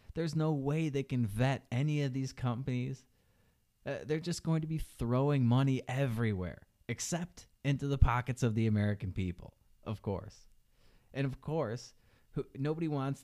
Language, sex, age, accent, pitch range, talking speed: English, male, 30-49, American, 110-140 Hz, 155 wpm